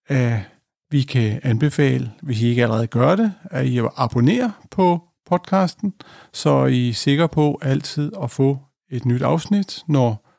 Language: Danish